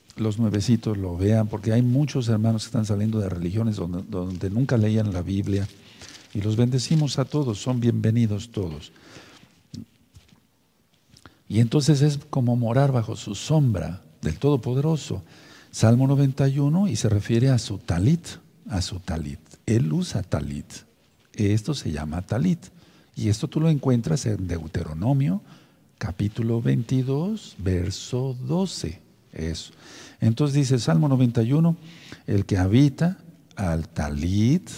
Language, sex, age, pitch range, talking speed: Spanish, male, 50-69, 100-140 Hz, 130 wpm